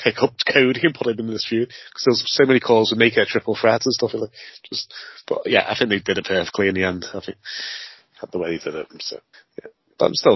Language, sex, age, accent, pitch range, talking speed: English, male, 30-49, British, 100-125 Hz, 285 wpm